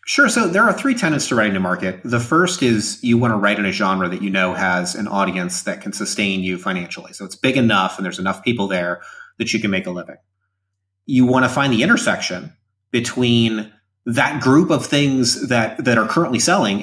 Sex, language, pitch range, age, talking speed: male, English, 100-130 Hz, 30-49, 220 wpm